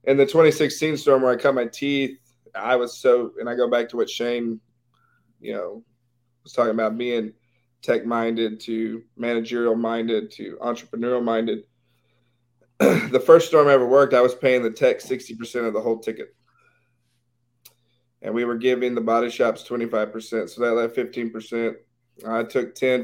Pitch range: 115-130 Hz